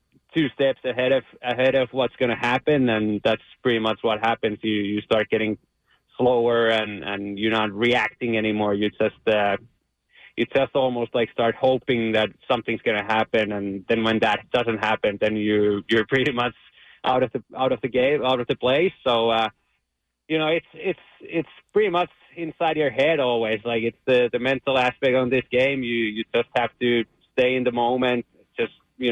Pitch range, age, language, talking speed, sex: 110-130 Hz, 20-39, English, 190 wpm, male